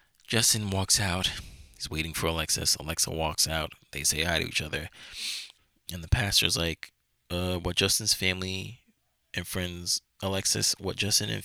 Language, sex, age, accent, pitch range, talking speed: English, male, 20-39, American, 85-105 Hz, 155 wpm